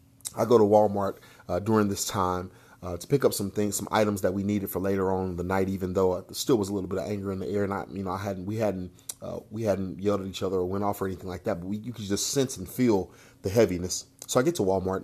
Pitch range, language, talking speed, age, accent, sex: 95-120 Hz, English, 300 wpm, 30-49, American, male